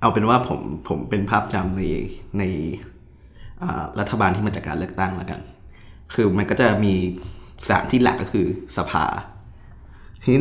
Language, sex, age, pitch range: Thai, male, 20-39, 95-110 Hz